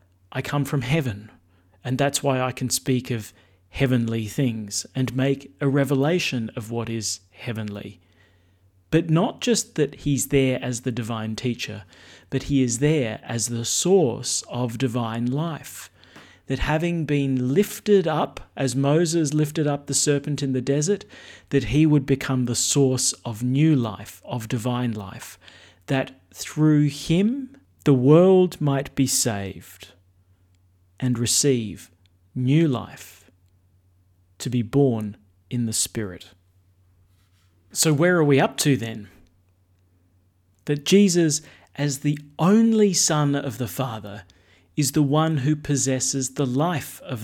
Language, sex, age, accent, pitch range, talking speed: English, male, 40-59, Australian, 95-145 Hz, 140 wpm